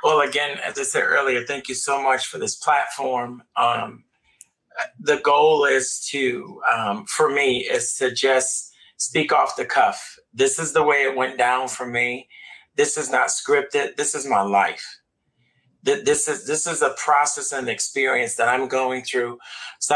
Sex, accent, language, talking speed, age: male, American, English, 175 wpm, 40-59